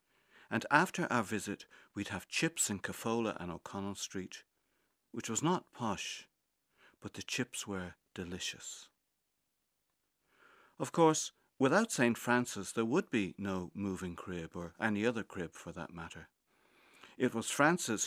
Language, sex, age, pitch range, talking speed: English, male, 60-79, 95-120 Hz, 140 wpm